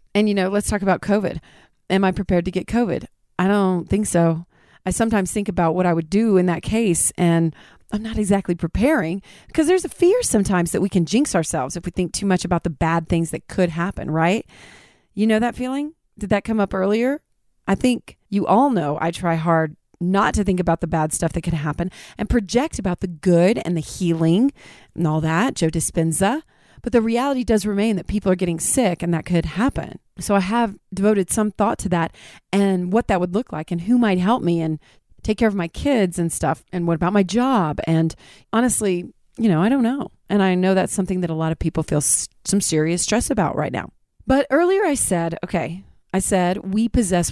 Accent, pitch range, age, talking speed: American, 170-215 Hz, 40-59, 220 wpm